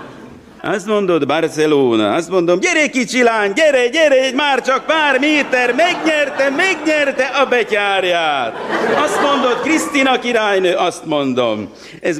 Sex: male